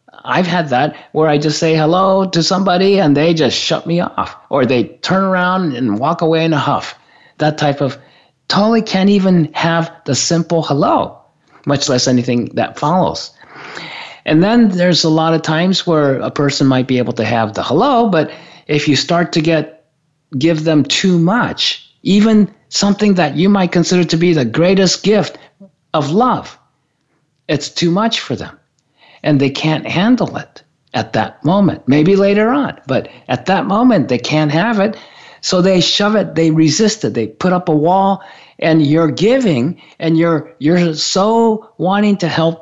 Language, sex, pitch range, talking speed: English, male, 150-190 Hz, 180 wpm